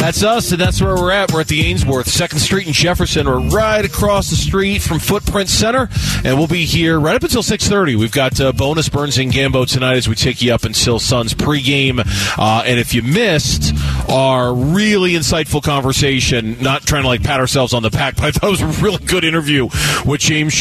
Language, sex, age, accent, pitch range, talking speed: English, male, 30-49, American, 120-150 Hz, 220 wpm